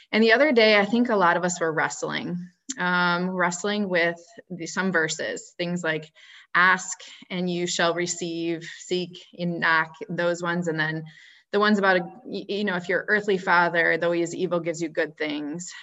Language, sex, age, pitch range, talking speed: English, female, 20-39, 170-205 Hz, 190 wpm